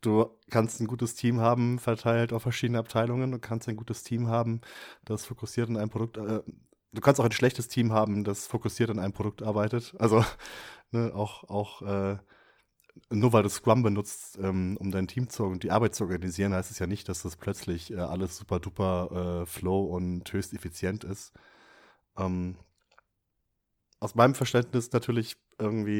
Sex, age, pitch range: male, 30-49, 95-115 Hz